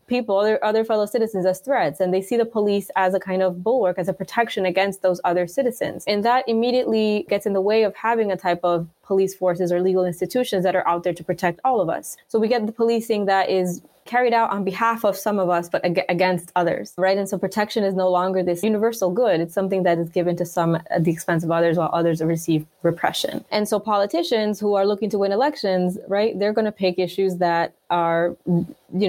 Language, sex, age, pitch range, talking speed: English, female, 20-39, 180-215 Hz, 230 wpm